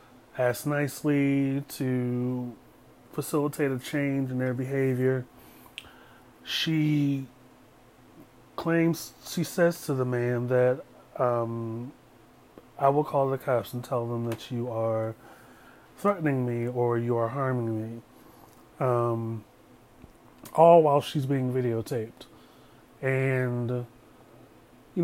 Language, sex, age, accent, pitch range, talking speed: English, male, 30-49, American, 120-145 Hz, 105 wpm